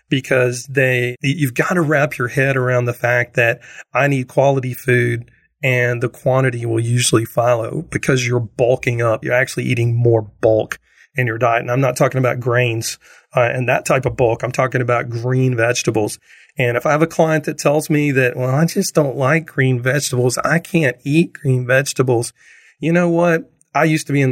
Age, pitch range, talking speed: 40-59, 125-155 Hz, 200 wpm